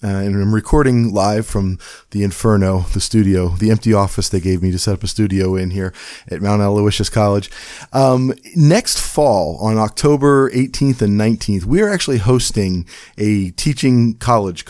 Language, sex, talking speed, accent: English, male, 170 wpm, American